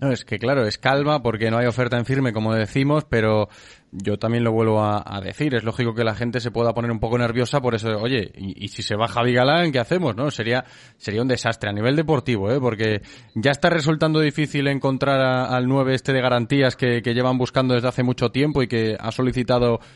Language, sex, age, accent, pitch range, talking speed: Spanish, male, 20-39, Spanish, 115-130 Hz, 230 wpm